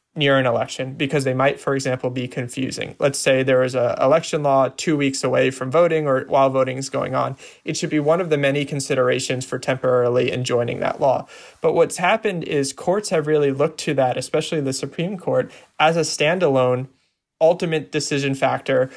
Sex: male